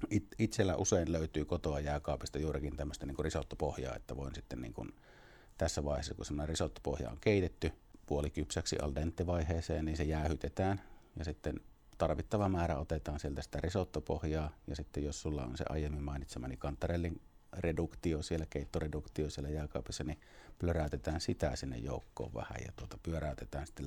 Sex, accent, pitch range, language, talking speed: male, native, 70-85 Hz, Finnish, 150 wpm